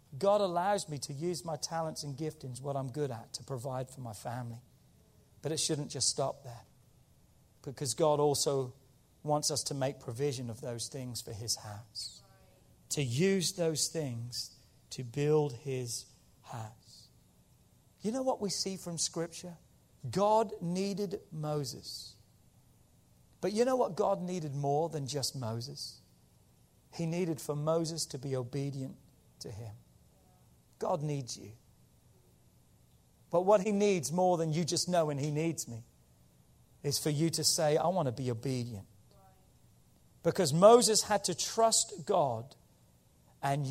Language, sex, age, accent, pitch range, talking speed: English, male, 40-59, British, 125-165 Hz, 145 wpm